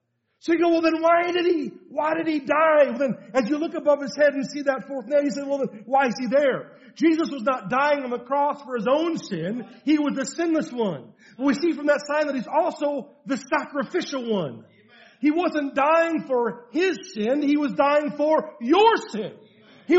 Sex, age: male, 40-59